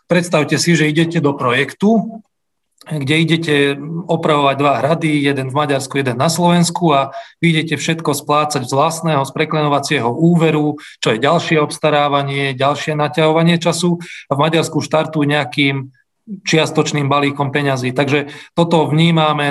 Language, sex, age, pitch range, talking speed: Slovak, male, 40-59, 140-160 Hz, 135 wpm